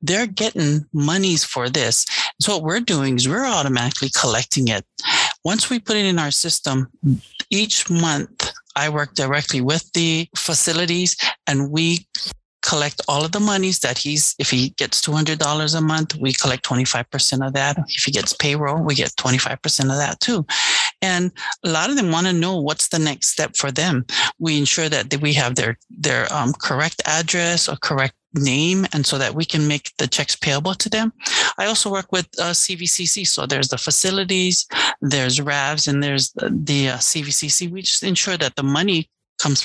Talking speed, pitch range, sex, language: 185 wpm, 140-180 Hz, male, English